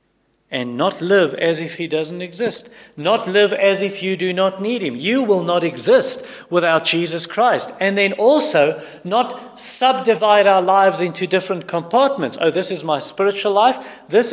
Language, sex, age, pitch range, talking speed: English, male, 40-59, 145-205 Hz, 170 wpm